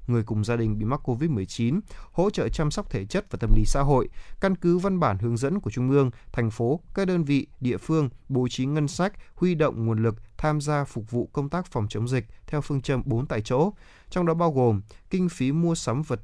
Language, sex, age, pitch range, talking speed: Vietnamese, male, 20-39, 115-155 Hz, 245 wpm